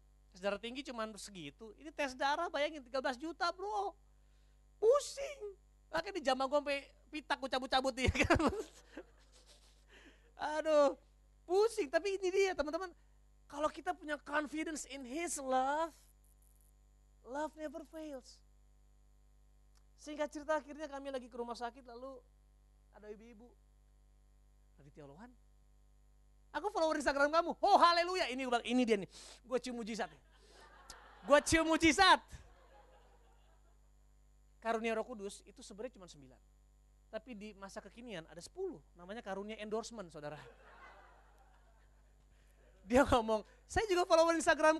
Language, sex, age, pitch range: Indonesian, male, 30-49, 185-310 Hz